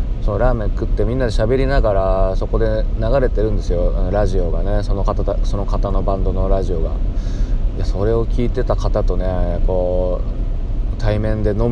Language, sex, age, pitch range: Japanese, male, 20-39, 95-110 Hz